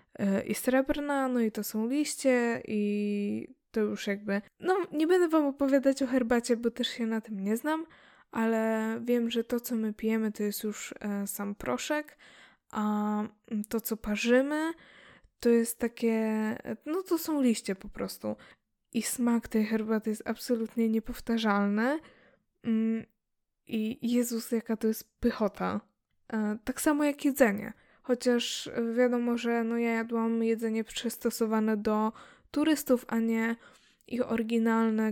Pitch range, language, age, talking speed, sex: 210-240 Hz, Polish, 10-29, 135 wpm, female